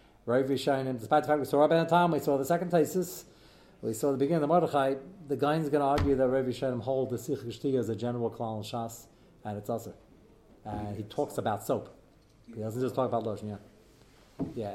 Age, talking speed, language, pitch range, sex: 40-59, 215 wpm, English, 110-140 Hz, male